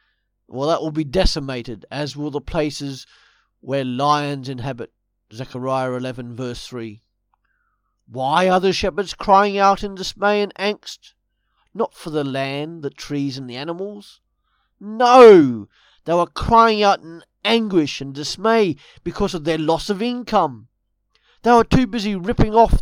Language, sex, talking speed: English, male, 145 wpm